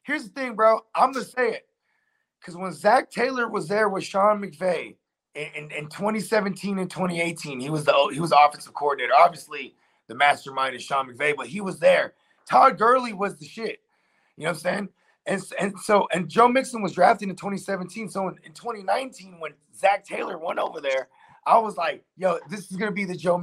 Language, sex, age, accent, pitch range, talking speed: English, male, 30-49, American, 160-230 Hz, 200 wpm